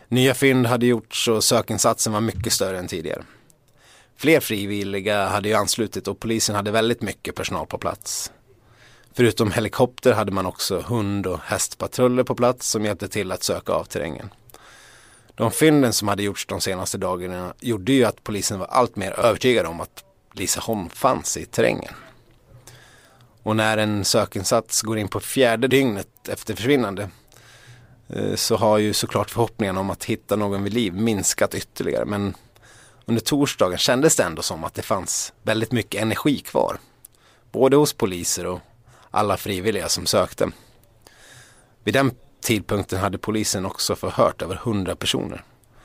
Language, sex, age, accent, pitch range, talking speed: English, male, 30-49, Swedish, 100-120 Hz, 155 wpm